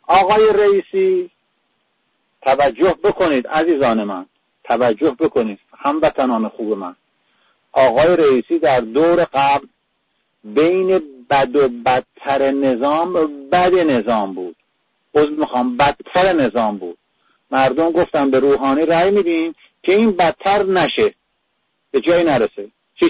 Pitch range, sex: 145-220 Hz, male